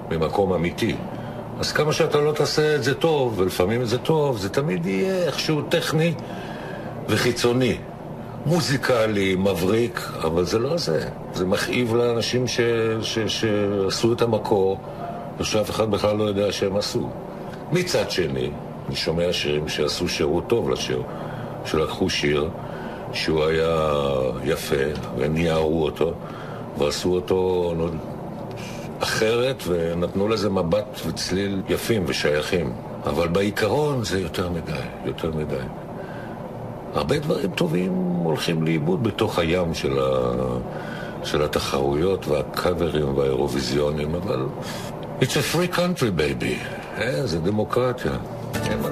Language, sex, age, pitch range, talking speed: Hebrew, male, 60-79, 85-125 Hz, 115 wpm